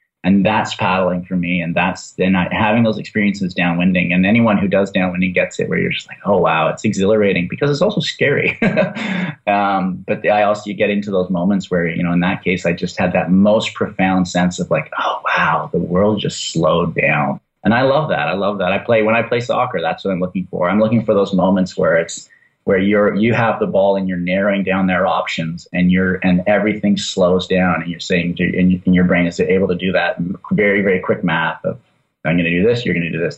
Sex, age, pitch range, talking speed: male, 30-49, 90-105 Hz, 240 wpm